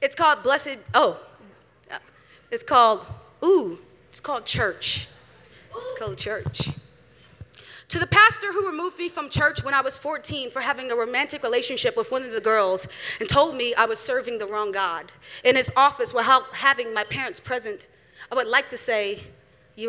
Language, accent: English, American